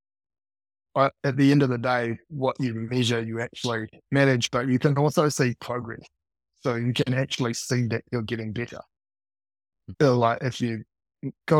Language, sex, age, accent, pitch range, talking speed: English, male, 20-39, Australian, 110-135 Hz, 170 wpm